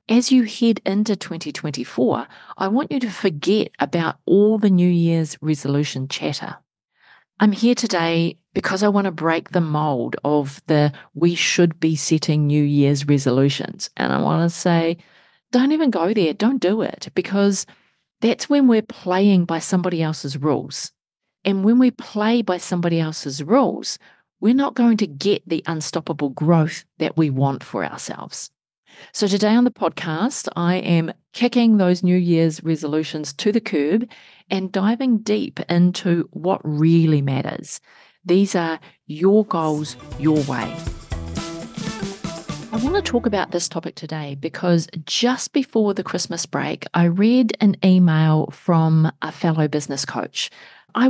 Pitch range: 155-205 Hz